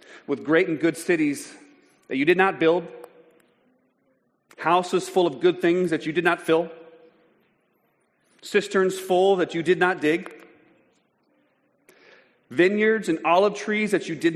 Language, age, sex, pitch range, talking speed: English, 40-59, male, 150-190 Hz, 140 wpm